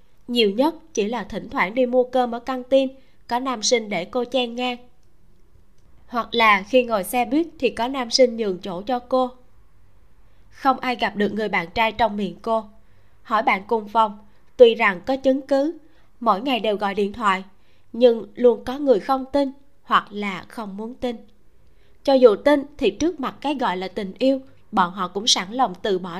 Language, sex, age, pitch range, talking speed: Vietnamese, female, 20-39, 200-255 Hz, 200 wpm